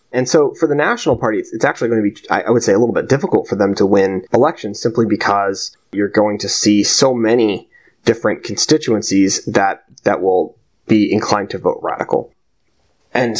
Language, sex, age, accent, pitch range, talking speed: English, male, 20-39, American, 105-125 Hz, 195 wpm